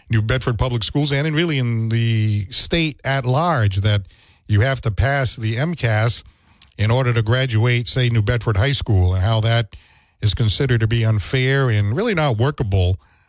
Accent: American